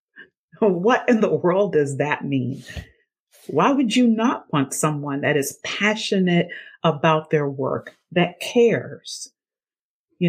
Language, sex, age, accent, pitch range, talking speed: English, female, 40-59, American, 150-210 Hz, 130 wpm